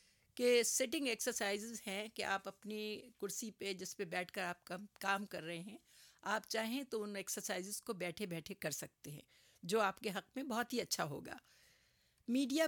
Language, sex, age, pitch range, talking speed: Urdu, female, 50-69, 195-250 Hz, 190 wpm